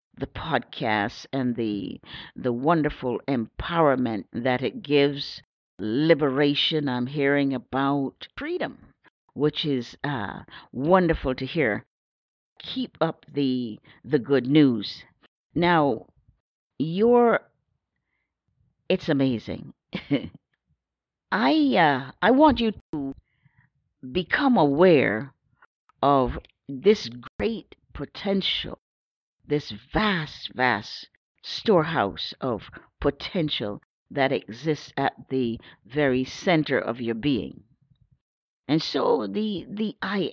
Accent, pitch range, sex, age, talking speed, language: American, 130-180 Hz, female, 50-69, 95 wpm, English